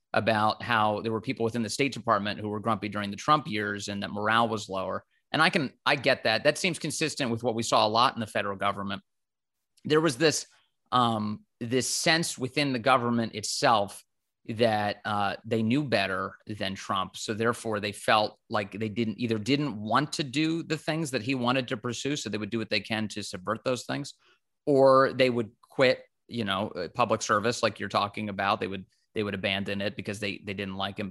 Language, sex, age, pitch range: English, male, 30-49, 105-140 Hz